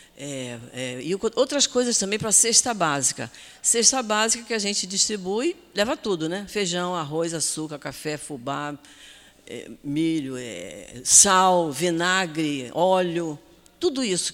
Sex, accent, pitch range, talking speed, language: female, Brazilian, 145-180 Hz, 135 wpm, Portuguese